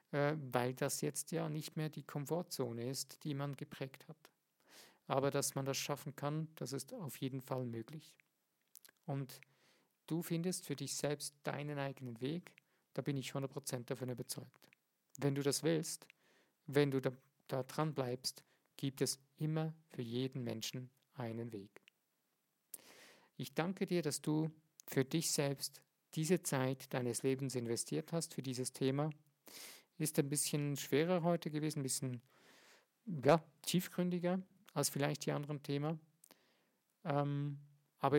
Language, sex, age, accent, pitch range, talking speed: German, male, 50-69, German, 135-160 Hz, 140 wpm